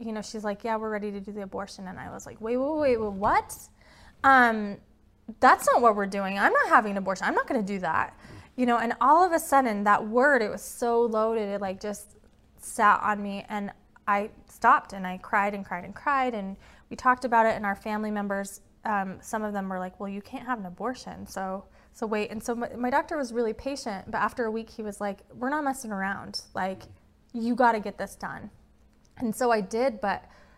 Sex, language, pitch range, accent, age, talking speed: female, English, 200-245 Hz, American, 20-39, 235 wpm